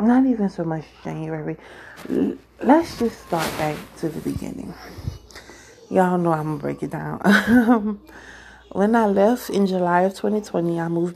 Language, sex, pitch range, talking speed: English, female, 170-200 Hz, 155 wpm